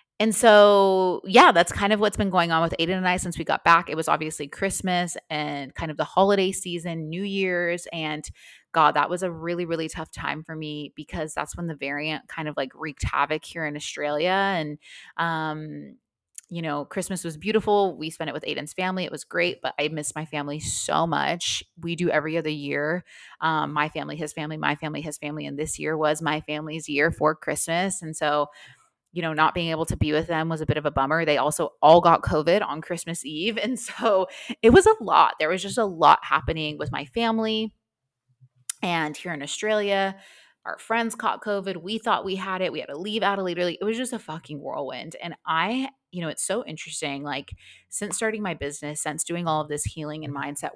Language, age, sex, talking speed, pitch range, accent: English, 20-39, female, 220 wpm, 150-185 Hz, American